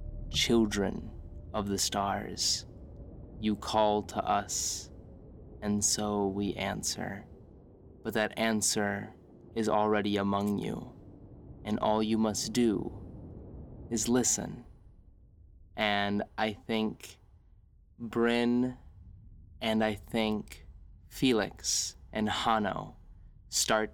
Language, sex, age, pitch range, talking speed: English, male, 20-39, 100-110 Hz, 95 wpm